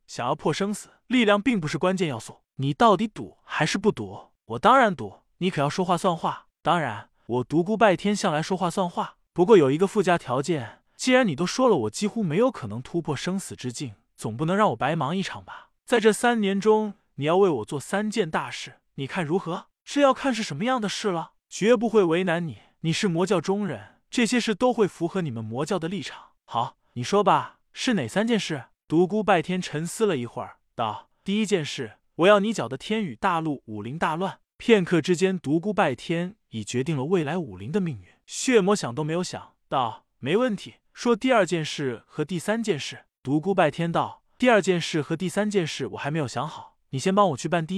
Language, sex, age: Chinese, male, 20-39